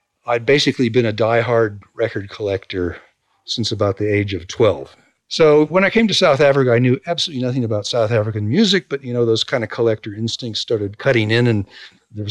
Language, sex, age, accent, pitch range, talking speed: English, male, 50-69, American, 110-140 Hz, 200 wpm